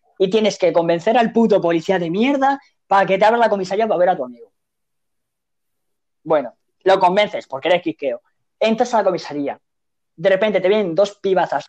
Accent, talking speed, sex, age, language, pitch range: Spanish, 185 wpm, female, 20-39, Spanish, 165-205 Hz